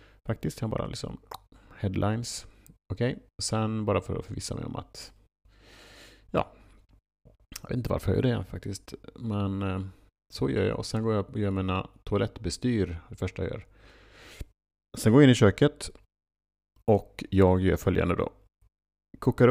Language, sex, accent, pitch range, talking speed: Swedish, male, Norwegian, 95-115 Hz, 160 wpm